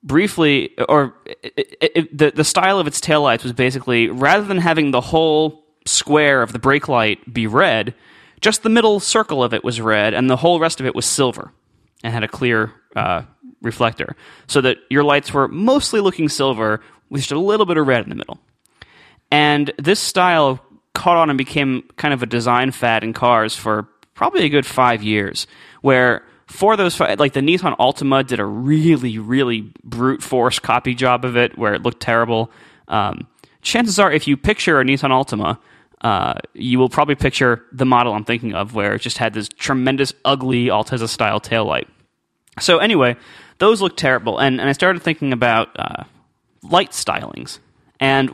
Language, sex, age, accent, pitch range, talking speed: English, male, 20-39, American, 120-155 Hz, 185 wpm